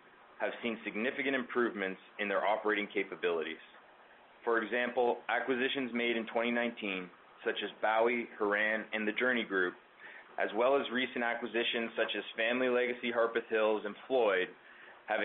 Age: 20-39